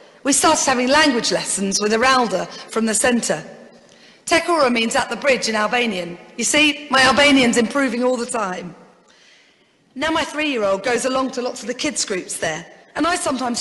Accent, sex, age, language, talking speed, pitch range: British, female, 40-59, English, 175 wpm, 210-265 Hz